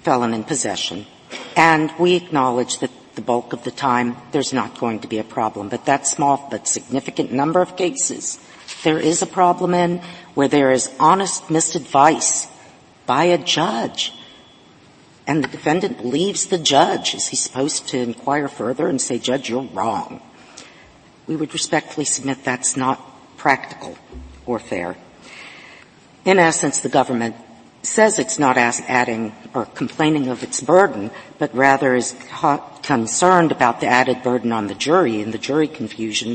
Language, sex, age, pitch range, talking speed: English, female, 50-69, 120-160 Hz, 155 wpm